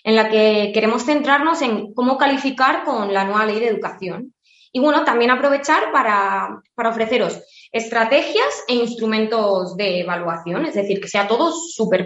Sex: female